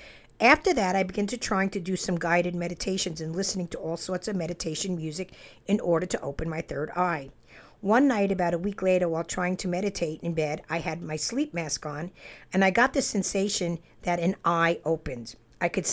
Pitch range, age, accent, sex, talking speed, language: 165-200 Hz, 50-69, American, female, 205 wpm, English